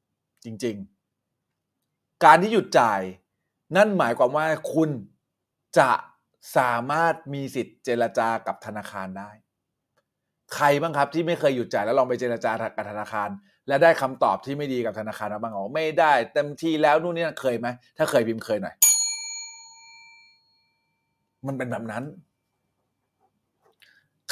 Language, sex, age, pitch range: Thai, male, 30-49, 115-155 Hz